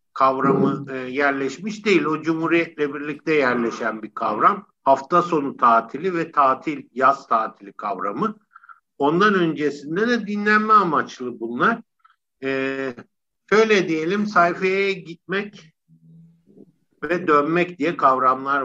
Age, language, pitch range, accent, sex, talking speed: 60-79, Turkish, 135-185 Hz, native, male, 105 wpm